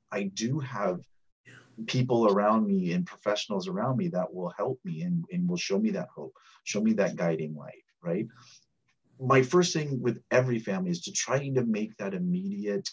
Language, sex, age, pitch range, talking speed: English, male, 30-49, 110-180 Hz, 185 wpm